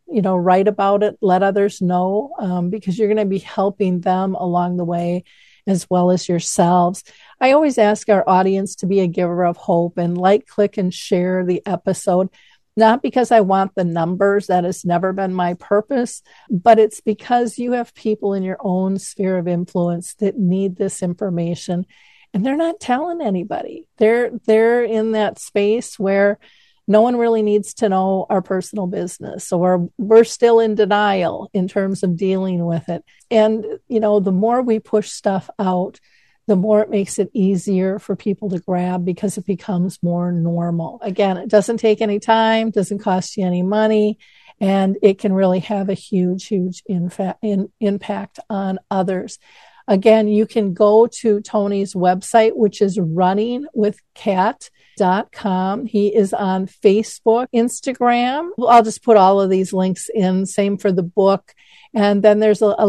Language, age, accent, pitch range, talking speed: English, 50-69, American, 185-215 Hz, 170 wpm